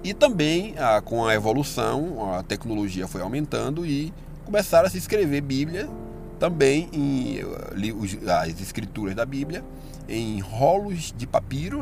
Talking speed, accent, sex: 140 wpm, Brazilian, male